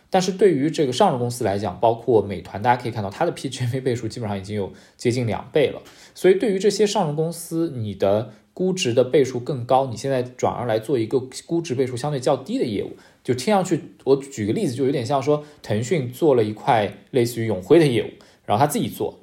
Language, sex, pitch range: Chinese, male, 110-155 Hz